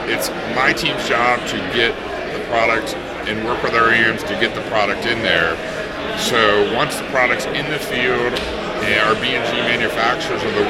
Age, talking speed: 50-69, 175 wpm